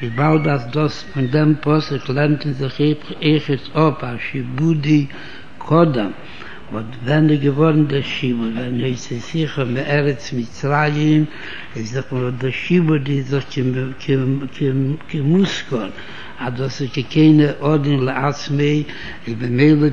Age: 60-79